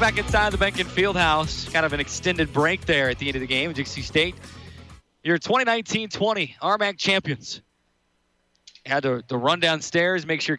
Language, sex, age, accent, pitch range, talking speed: English, male, 20-39, American, 135-170 Hz, 180 wpm